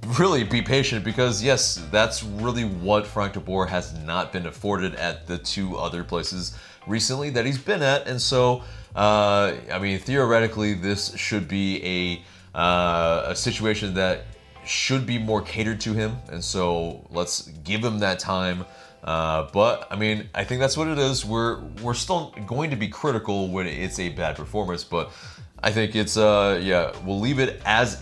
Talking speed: 180 wpm